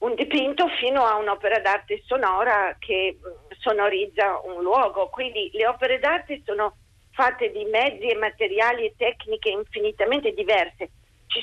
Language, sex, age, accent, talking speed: Italian, female, 50-69, native, 135 wpm